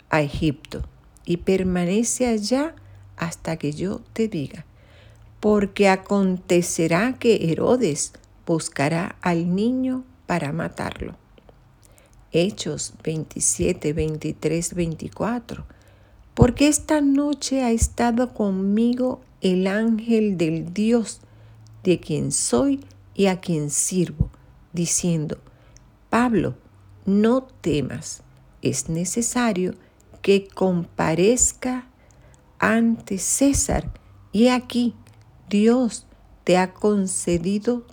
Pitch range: 150-230 Hz